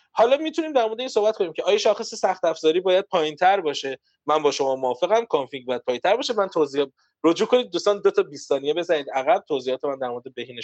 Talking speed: 210 wpm